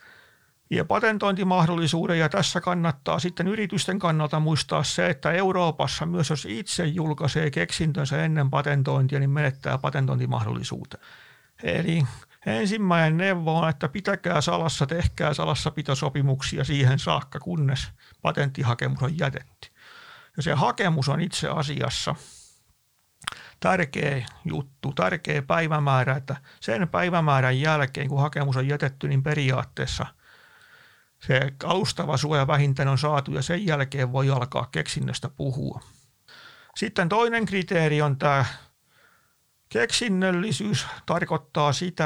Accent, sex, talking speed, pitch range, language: native, male, 115 wpm, 140-175 Hz, Finnish